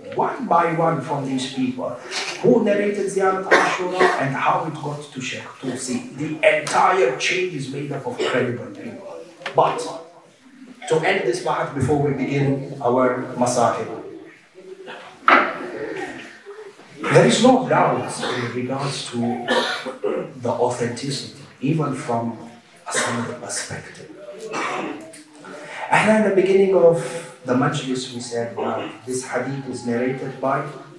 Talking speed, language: 120 wpm, English